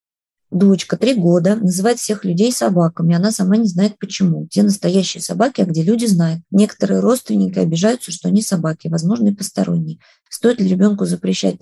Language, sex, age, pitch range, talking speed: Russian, female, 20-39, 165-205 Hz, 165 wpm